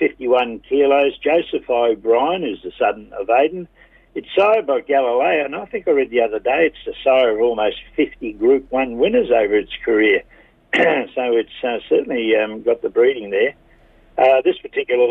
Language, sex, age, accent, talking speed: English, male, 60-79, Australian, 180 wpm